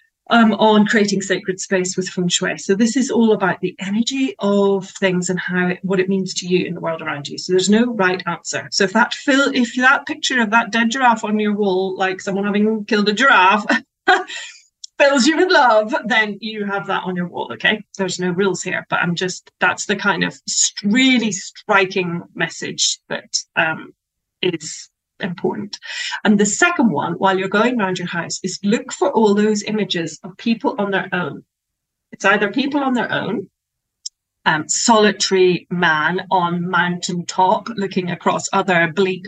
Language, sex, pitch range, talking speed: English, female, 180-230 Hz, 185 wpm